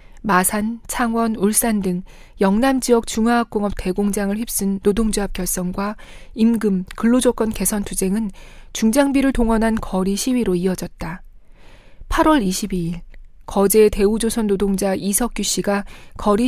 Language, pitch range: Korean, 195-235 Hz